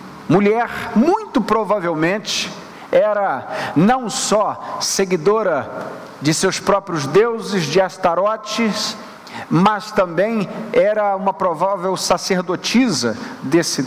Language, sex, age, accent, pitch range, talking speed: Portuguese, male, 50-69, Brazilian, 190-240 Hz, 85 wpm